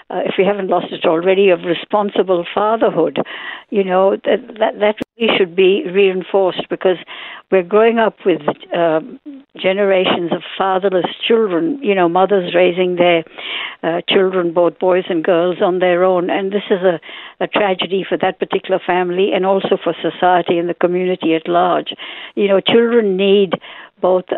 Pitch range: 175-205 Hz